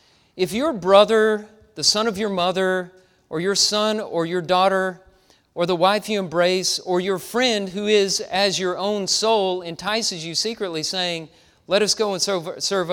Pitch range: 165-210 Hz